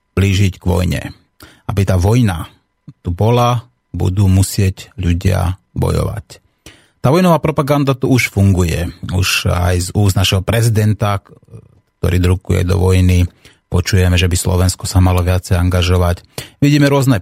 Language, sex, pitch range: Slovak, male, 90-110 Hz